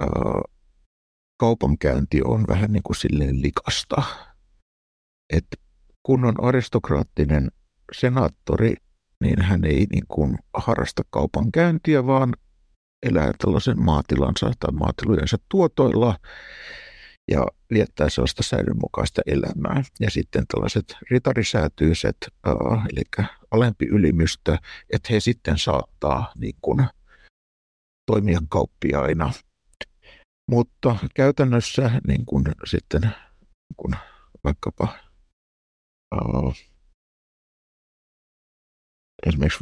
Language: Finnish